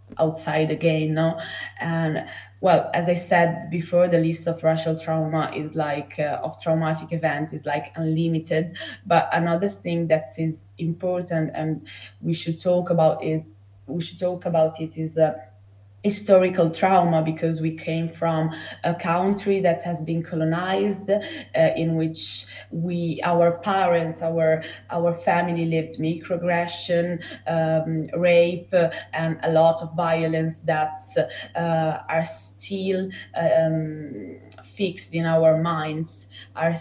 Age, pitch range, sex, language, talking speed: 20-39, 155-170 Hz, female, Italian, 135 wpm